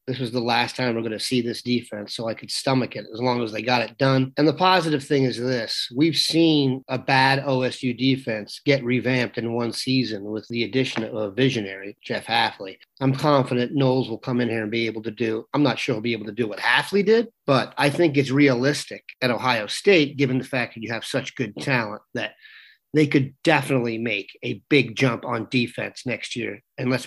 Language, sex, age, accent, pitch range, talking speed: English, male, 30-49, American, 120-145 Hz, 225 wpm